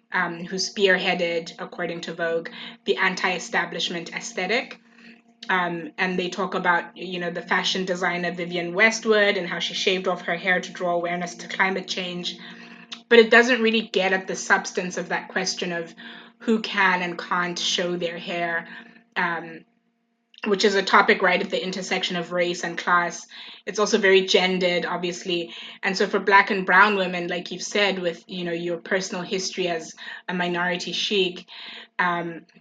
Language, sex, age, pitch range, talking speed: English, female, 20-39, 175-210 Hz, 165 wpm